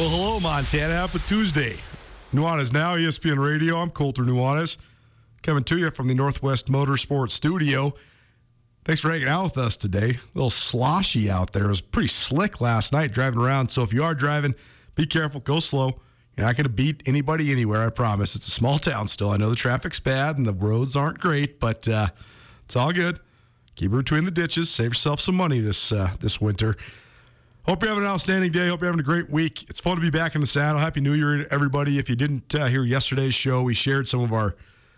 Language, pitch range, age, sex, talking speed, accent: English, 120-160 Hz, 40-59, male, 220 wpm, American